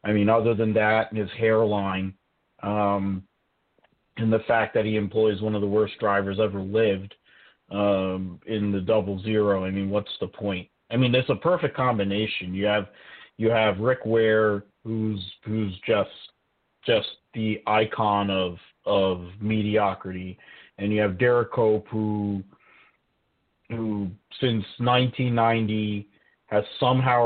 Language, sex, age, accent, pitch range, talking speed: English, male, 40-59, American, 100-120 Hz, 145 wpm